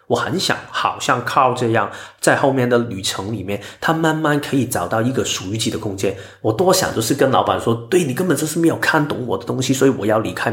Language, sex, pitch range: Chinese, male, 100-135 Hz